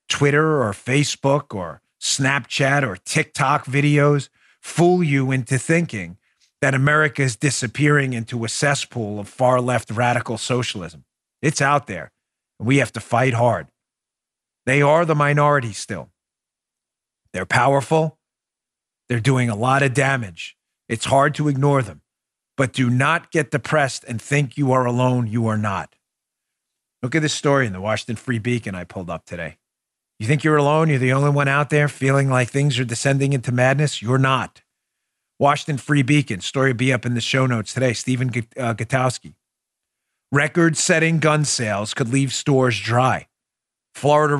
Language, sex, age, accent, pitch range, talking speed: English, male, 40-59, American, 120-145 Hz, 160 wpm